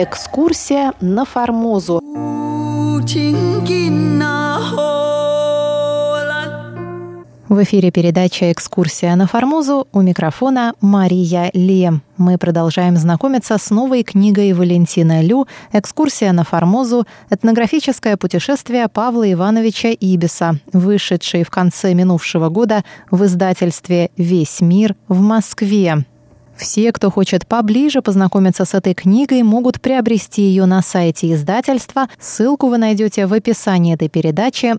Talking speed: 105 wpm